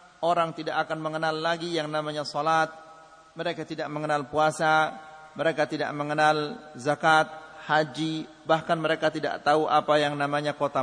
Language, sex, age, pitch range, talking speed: Malay, male, 40-59, 155-185 Hz, 140 wpm